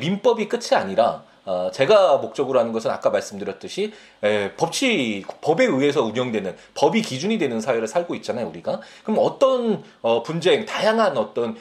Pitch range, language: 140-205 Hz, Korean